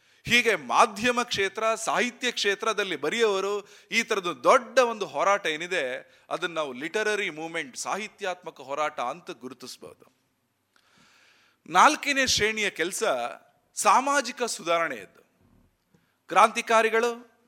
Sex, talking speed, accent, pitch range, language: male, 90 wpm, native, 190-235 Hz, Kannada